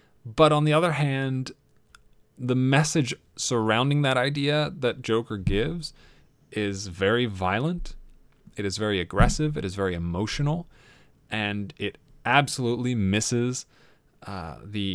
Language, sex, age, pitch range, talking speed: English, male, 30-49, 100-140 Hz, 120 wpm